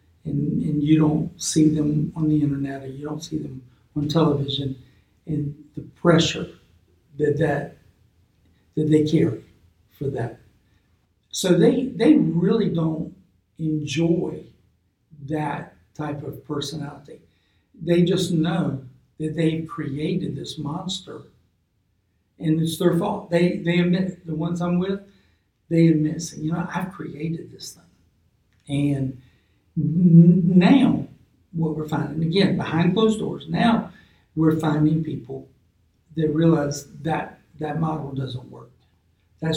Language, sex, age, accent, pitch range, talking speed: English, male, 60-79, American, 130-160 Hz, 130 wpm